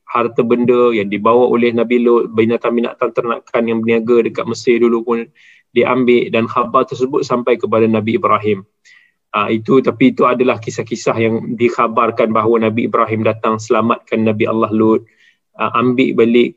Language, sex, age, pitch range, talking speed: Malay, male, 20-39, 110-125 Hz, 150 wpm